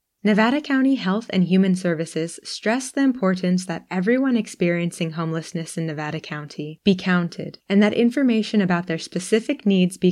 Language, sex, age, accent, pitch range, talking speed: English, female, 20-39, American, 170-215 Hz, 155 wpm